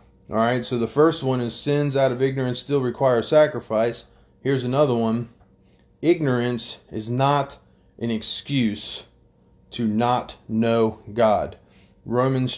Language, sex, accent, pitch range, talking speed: English, male, American, 110-140 Hz, 125 wpm